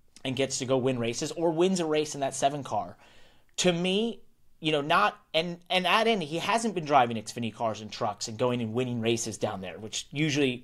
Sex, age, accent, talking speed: male, 30-49, American, 225 wpm